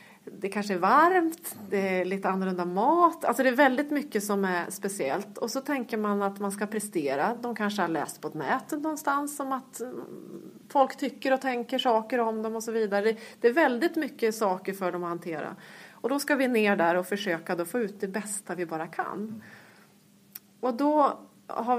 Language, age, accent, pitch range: Swedish, 30-49, native, 190-240 Hz